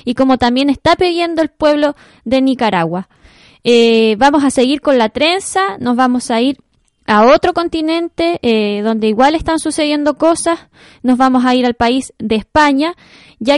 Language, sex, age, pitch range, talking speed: Spanish, female, 10-29, 235-300 Hz, 170 wpm